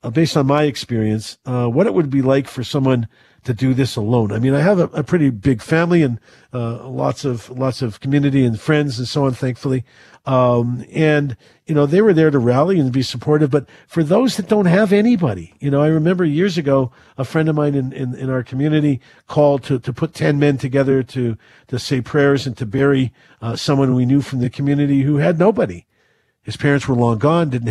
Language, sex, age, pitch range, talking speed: English, male, 50-69, 125-150 Hz, 220 wpm